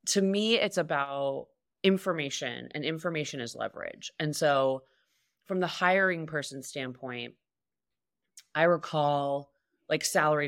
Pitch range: 135-175 Hz